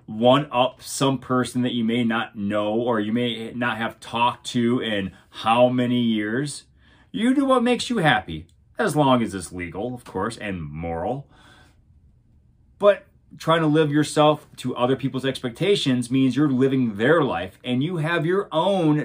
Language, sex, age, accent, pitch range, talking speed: English, male, 30-49, American, 115-150 Hz, 170 wpm